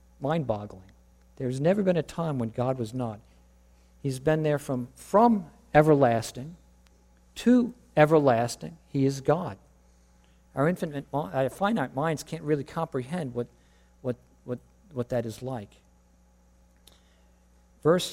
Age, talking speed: 50-69, 120 wpm